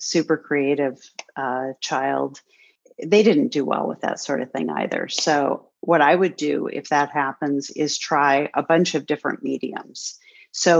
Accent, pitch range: American, 145-165 Hz